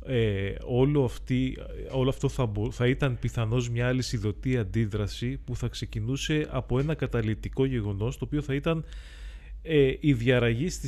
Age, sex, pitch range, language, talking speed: 30-49, male, 100-130 Hz, Greek, 155 wpm